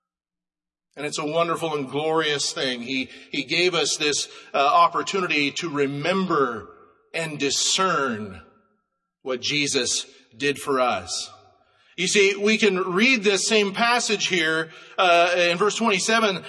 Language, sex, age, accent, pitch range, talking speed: English, male, 40-59, American, 165-240 Hz, 130 wpm